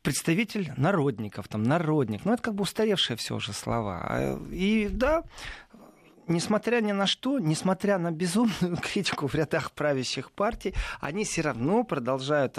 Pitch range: 135-200 Hz